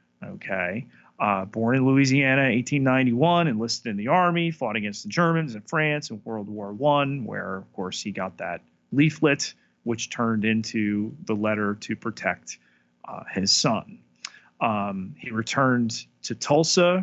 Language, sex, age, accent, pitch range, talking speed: English, male, 30-49, American, 105-130 Hz, 150 wpm